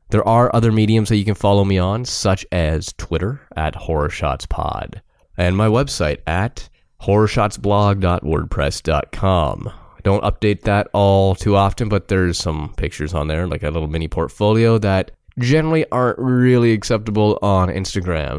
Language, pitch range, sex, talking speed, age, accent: English, 80-105 Hz, male, 155 wpm, 20-39, American